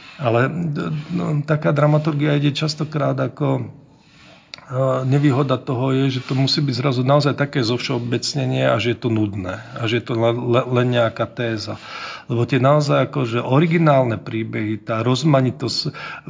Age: 40-59